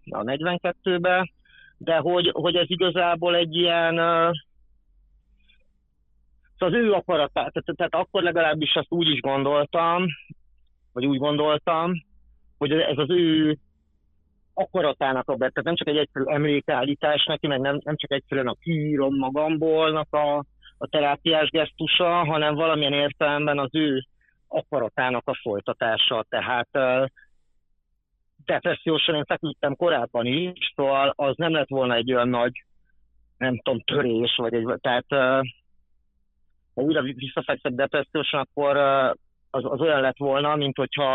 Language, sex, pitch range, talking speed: Hungarian, male, 115-155 Hz, 125 wpm